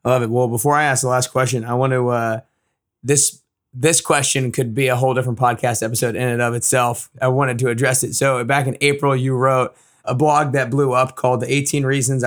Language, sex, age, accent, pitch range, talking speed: English, male, 20-39, American, 125-145 Hz, 235 wpm